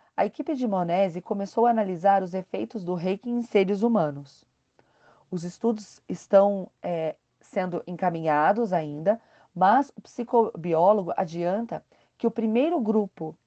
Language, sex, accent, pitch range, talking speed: Portuguese, female, Brazilian, 175-225 Hz, 125 wpm